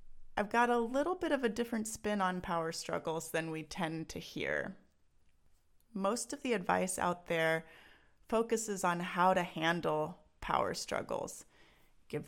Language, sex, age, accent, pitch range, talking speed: English, female, 30-49, American, 160-210 Hz, 150 wpm